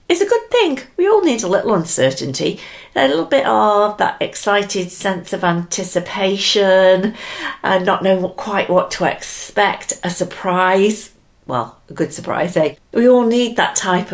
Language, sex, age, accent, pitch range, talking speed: English, female, 50-69, British, 155-200 Hz, 160 wpm